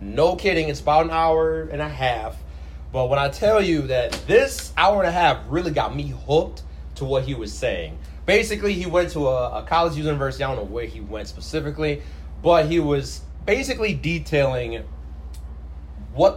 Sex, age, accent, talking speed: male, 30-49, American, 185 wpm